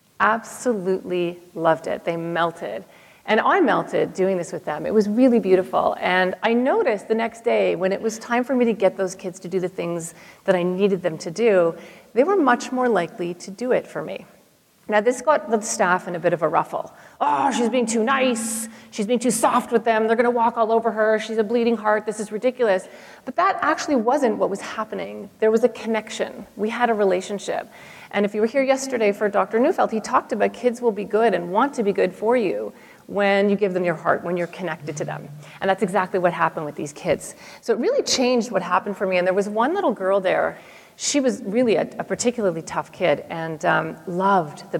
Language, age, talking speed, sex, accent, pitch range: English, 40-59, 230 wpm, female, American, 180-230 Hz